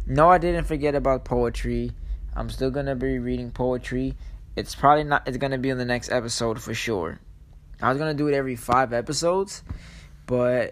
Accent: American